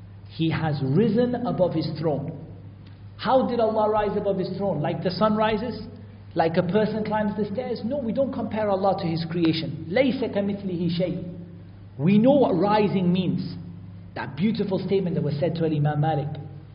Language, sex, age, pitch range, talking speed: English, male, 50-69, 120-195 Hz, 165 wpm